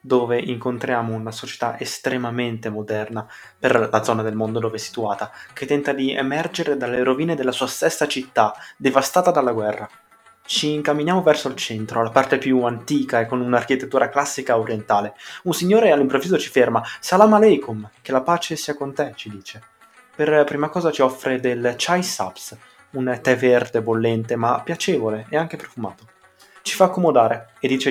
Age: 20-39